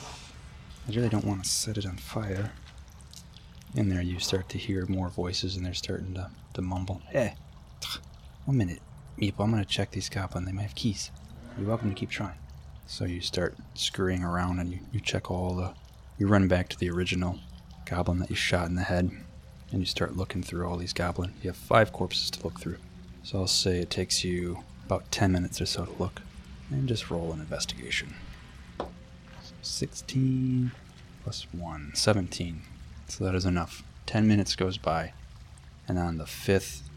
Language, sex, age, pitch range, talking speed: English, male, 20-39, 75-95 Hz, 185 wpm